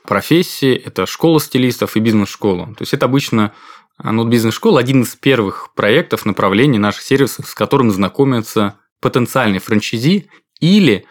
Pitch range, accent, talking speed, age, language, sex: 110-145 Hz, native, 140 wpm, 20-39, Russian, male